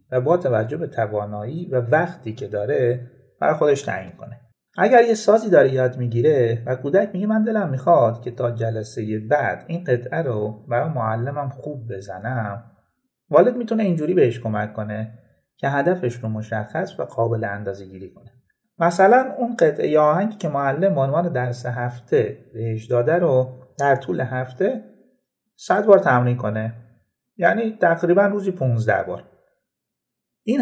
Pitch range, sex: 115-165 Hz, male